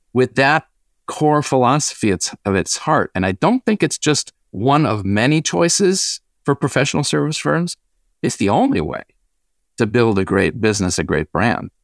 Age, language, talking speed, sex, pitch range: 50-69, English, 170 wpm, male, 95-140 Hz